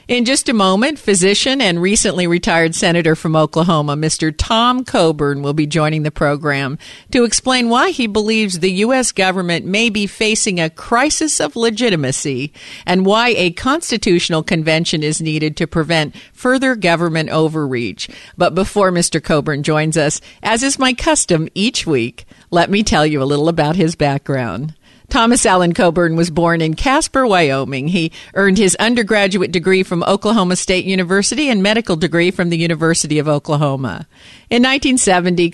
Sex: female